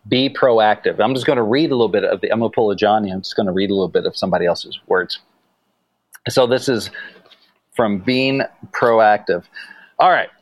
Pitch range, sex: 110-140 Hz, male